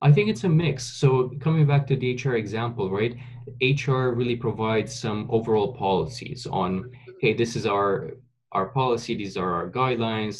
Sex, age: male, 20-39